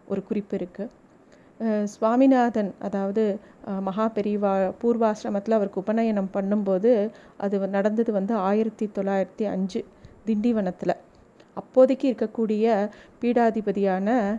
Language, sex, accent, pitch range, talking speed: Tamil, female, native, 195-225 Hz, 85 wpm